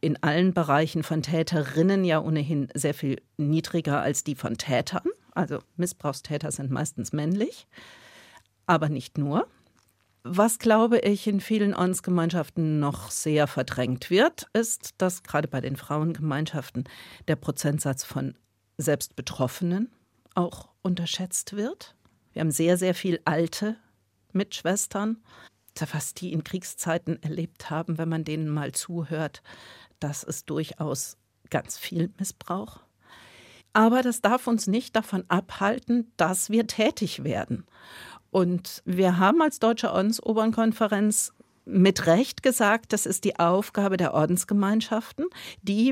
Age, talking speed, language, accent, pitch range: 50-69, 125 wpm, German, German, 150-205 Hz